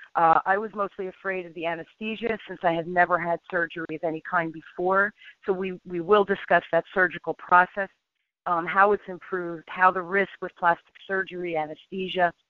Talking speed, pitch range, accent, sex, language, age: 180 wpm, 175-200 Hz, American, female, English, 40-59